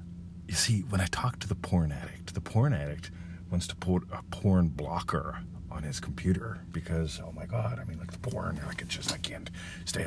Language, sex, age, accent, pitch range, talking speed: English, male, 40-59, American, 85-95 Hz, 215 wpm